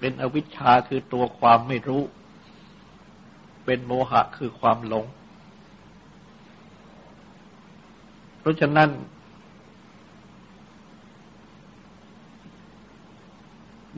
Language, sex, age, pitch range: Thai, male, 60-79, 125-200 Hz